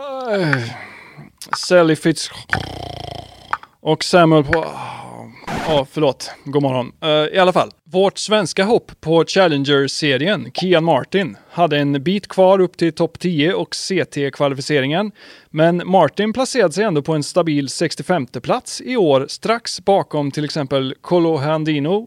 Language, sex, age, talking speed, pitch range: Swedish, male, 30-49, 135 wpm, 145-190 Hz